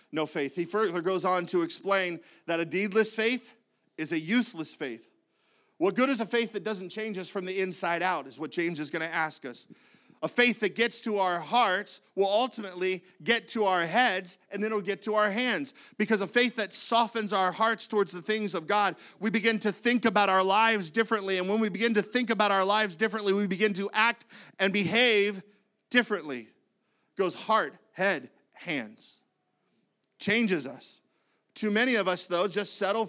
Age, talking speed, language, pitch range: 40-59, 195 wpm, English, 185-230 Hz